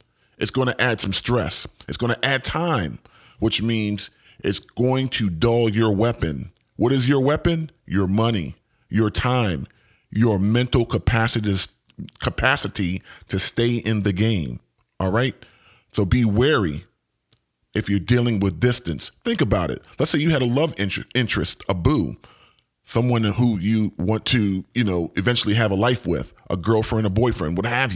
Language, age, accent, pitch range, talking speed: English, 40-59, American, 100-130 Hz, 160 wpm